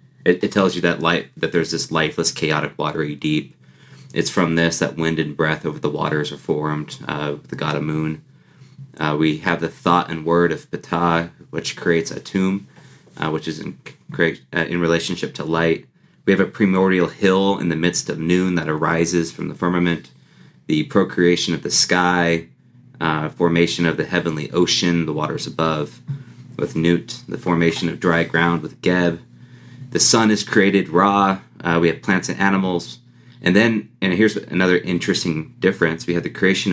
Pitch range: 80-105 Hz